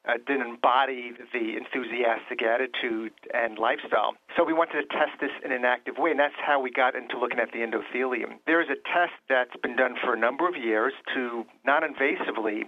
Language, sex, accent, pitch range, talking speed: English, male, American, 120-145 Hz, 200 wpm